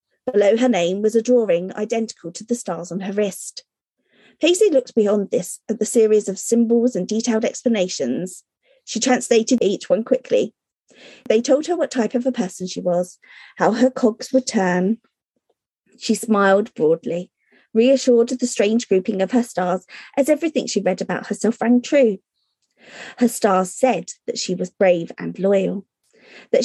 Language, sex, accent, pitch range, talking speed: English, female, British, 195-255 Hz, 165 wpm